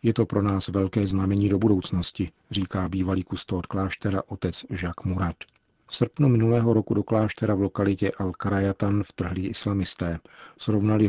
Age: 50-69